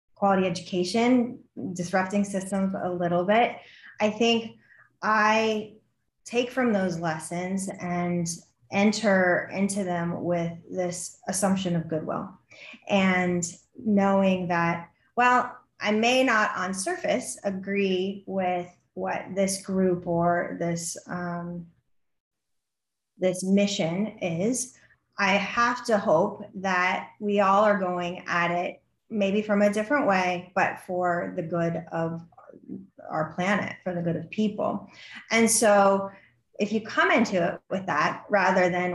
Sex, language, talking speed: female, English, 125 wpm